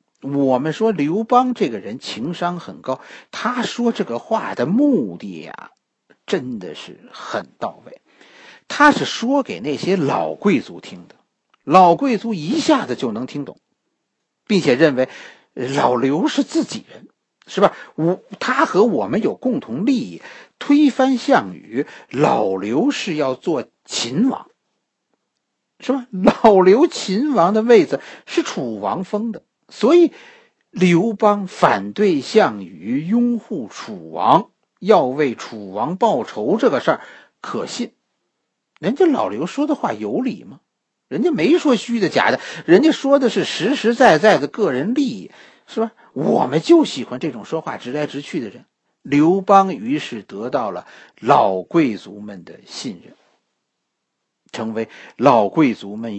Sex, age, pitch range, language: male, 50-69, 170-275 Hz, Chinese